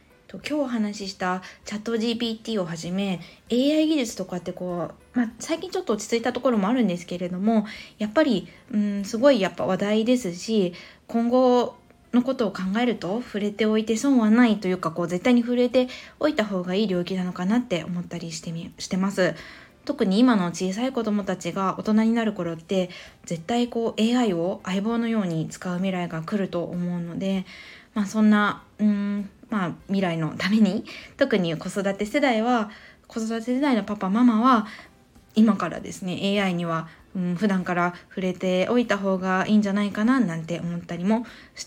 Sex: female